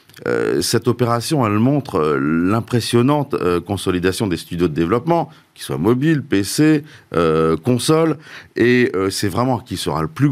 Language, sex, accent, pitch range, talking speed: French, male, French, 95-135 Hz, 140 wpm